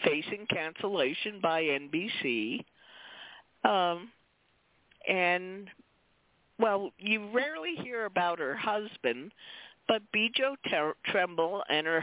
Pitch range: 140-205 Hz